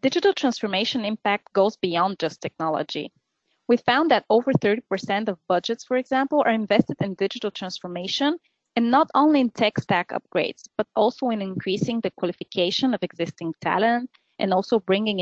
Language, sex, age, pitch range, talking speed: English, female, 30-49, 180-230 Hz, 160 wpm